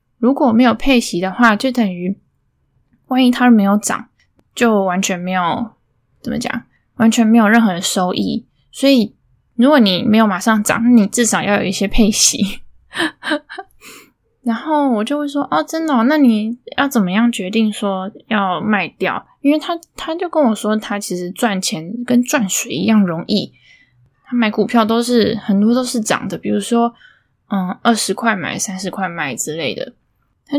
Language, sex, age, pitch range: Chinese, female, 10-29, 195-245 Hz